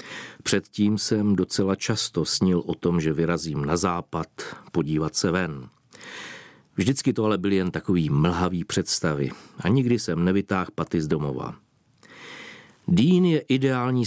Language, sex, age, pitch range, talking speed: Czech, male, 50-69, 90-125 Hz, 135 wpm